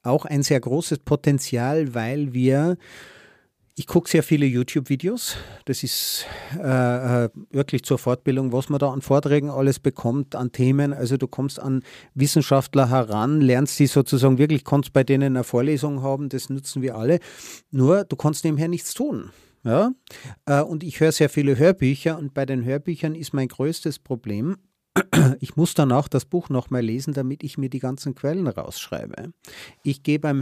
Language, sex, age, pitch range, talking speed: German, male, 40-59, 130-155 Hz, 170 wpm